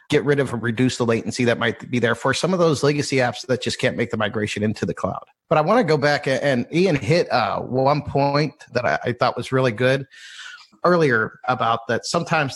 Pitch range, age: 115-135 Hz, 30-49